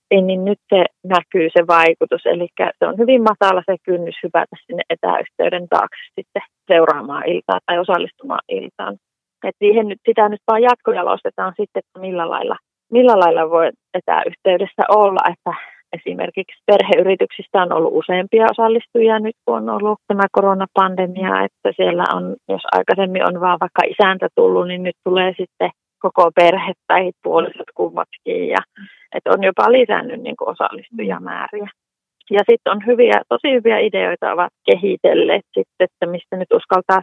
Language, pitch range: Finnish, 180-235 Hz